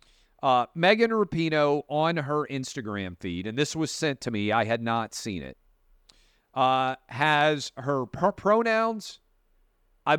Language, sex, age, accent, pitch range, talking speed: English, male, 40-59, American, 120-165 Hz, 135 wpm